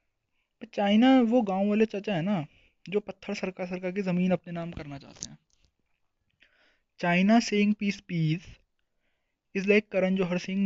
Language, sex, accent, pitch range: Hindi, male, native, 165-205 Hz